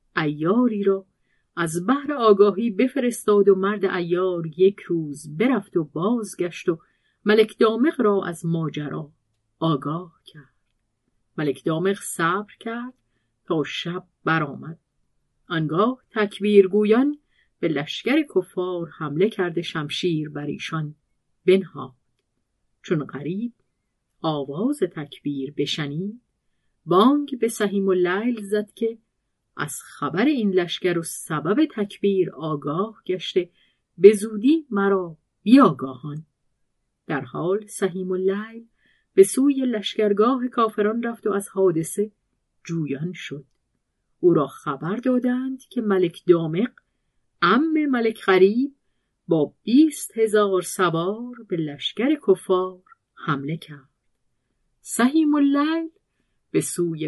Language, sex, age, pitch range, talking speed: Persian, female, 40-59, 160-225 Hz, 105 wpm